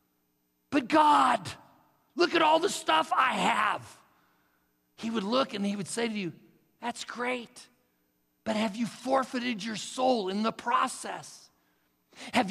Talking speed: 145 wpm